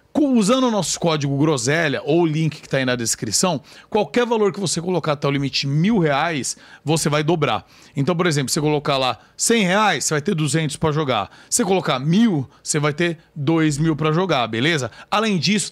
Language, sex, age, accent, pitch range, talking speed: Portuguese, male, 40-59, Brazilian, 140-180 Hz, 205 wpm